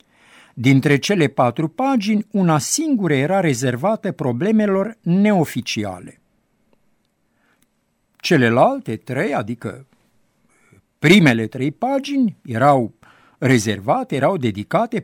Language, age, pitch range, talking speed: Romanian, 60-79, 125-200 Hz, 80 wpm